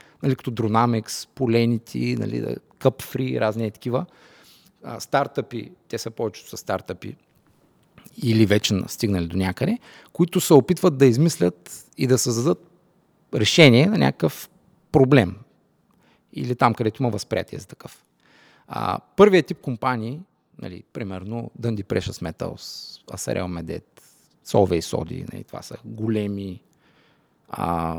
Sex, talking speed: male, 125 wpm